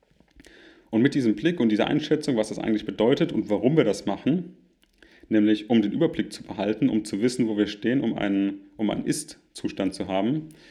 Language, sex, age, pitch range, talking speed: German, male, 30-49, 105-135 Hz, 190 wpm